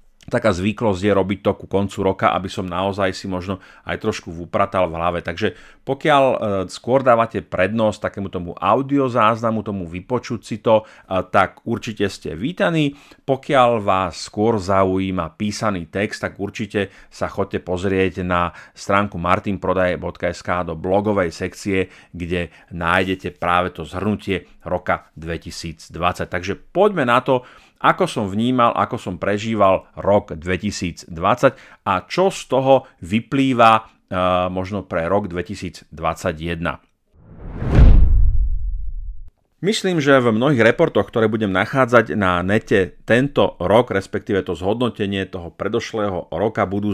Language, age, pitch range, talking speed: Slovak, 40-59, 90-110 Hz, 125 wpm